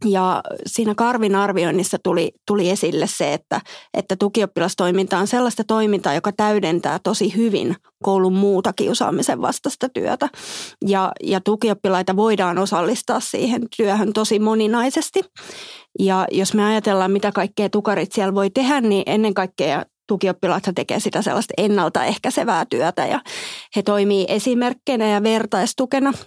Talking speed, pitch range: 130 wpm, 195-225 Hz